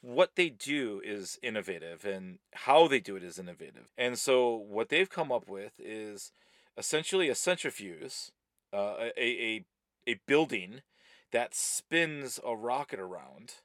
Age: 40-59